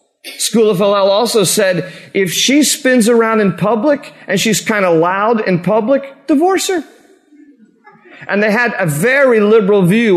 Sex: male